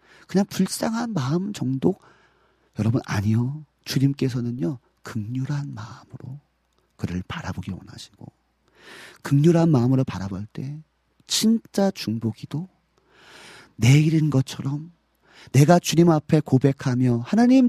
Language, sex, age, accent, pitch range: Korean, male, 40-59, native, 115-175 Hz